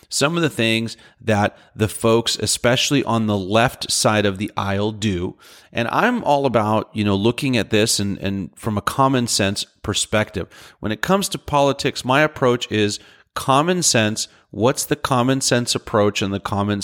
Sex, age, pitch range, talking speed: male, 30-49, 105-130 Hz, 180 wpm